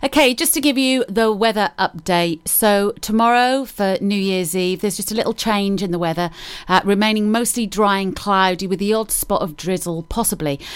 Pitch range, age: 165-210 Hz, 30-49